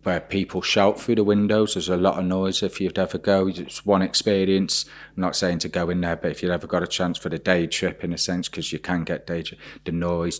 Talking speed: 270 wpm